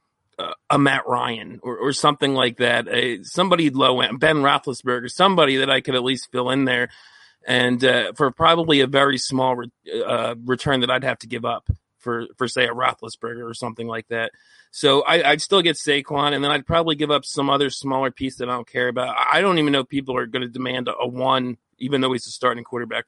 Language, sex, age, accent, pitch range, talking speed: English, male, 30-49, American, 125-155 Hz, 230 wpm